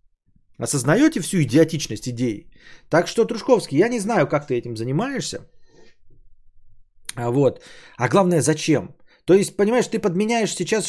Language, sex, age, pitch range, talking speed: Bulgarian, male, 20-39, 125-190 Hz, 130 wpm